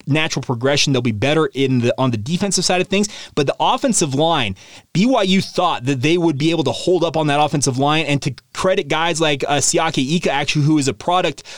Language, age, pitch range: English, 30-49, 140-180 Hz